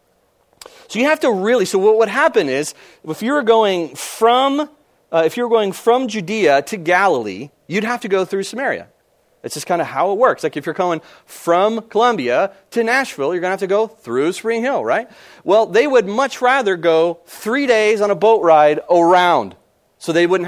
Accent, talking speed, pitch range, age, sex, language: American, 210 wpm, 150-235 Hz, 30-49, male, English